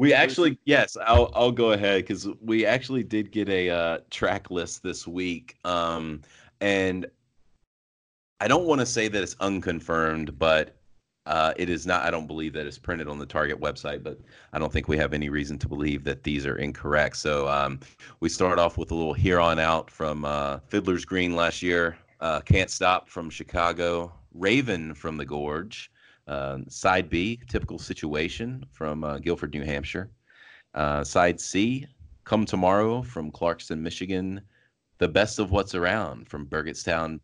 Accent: American